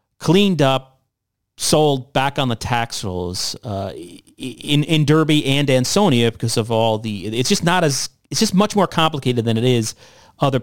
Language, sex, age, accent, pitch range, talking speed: English, male, 40-59, American, 110-140 Hz, 175 wpm